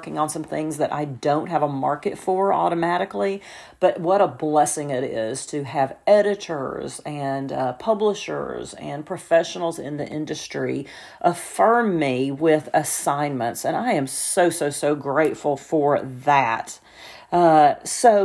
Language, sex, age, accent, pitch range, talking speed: English, female, 40-59, American, 155-200 Hz, 140 wpm